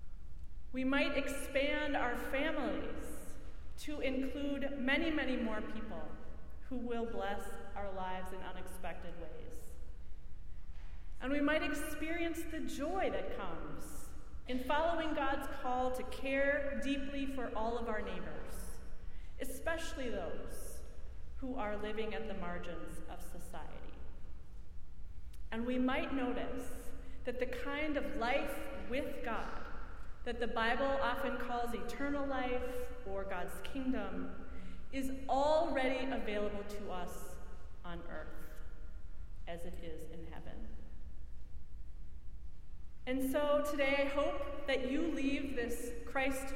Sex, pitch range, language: female, 185-280 Hz, English